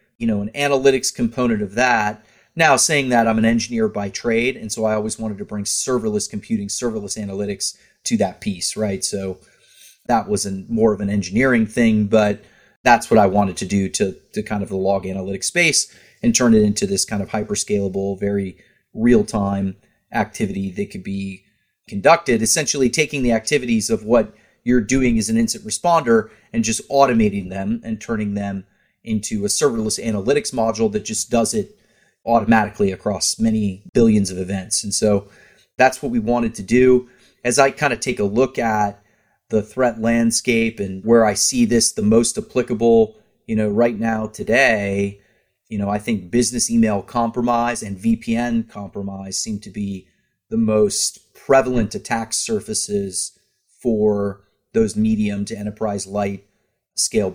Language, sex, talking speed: English, male, 165 wpm